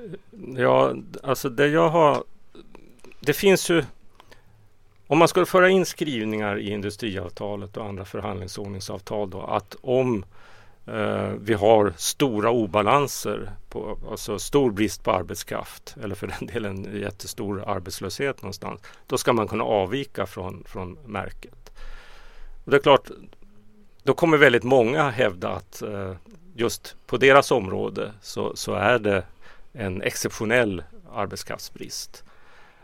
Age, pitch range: 40-59, 100-125 Hz